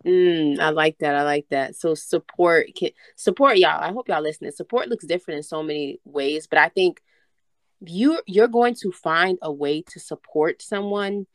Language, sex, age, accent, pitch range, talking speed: English, female, 20-39, American, 150-195 Hz, 190 wpm